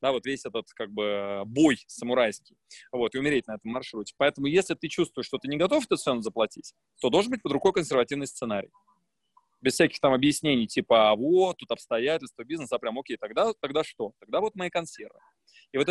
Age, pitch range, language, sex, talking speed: 20-39, 130-165 Hz, Russian, male, 200 wpm